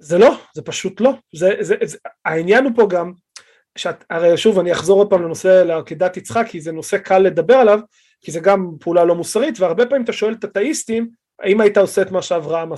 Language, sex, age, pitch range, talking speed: Hebrew, male, 30-49, 175-230 Hz, 210 wpm